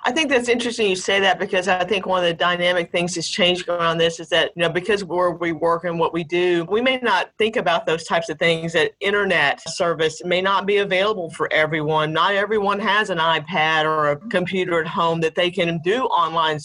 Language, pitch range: English, 170-205 Hz